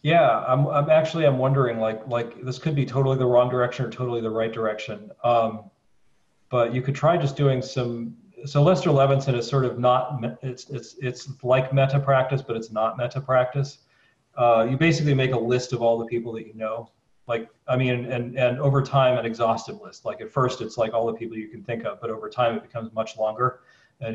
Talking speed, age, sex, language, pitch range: 220 wpm, 40-59, male, English, 115-135 Hz